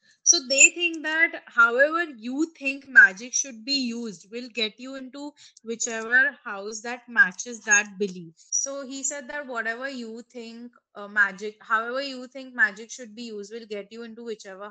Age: 20-39